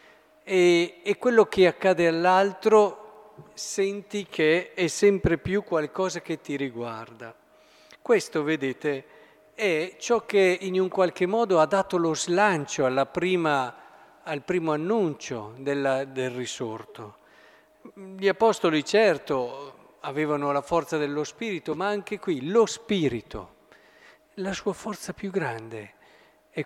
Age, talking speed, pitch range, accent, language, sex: 50-69, 115 wpm, 135-180 Hz, native, Italian, male